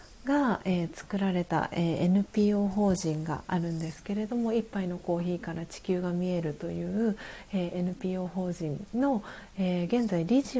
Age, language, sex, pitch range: 40-59, Japanese, female, 180-235 Hz